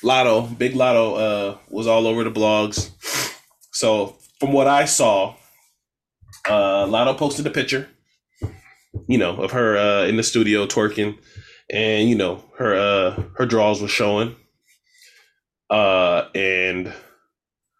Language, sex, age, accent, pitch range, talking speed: English, male, 20-39, American, 100-130 Hz, 130 wpm